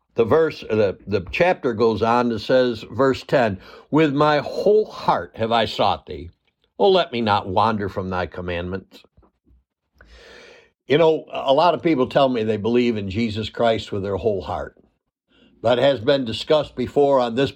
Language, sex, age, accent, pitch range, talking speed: English, male, 60-79, American, 110-150 Hz, 175 wpm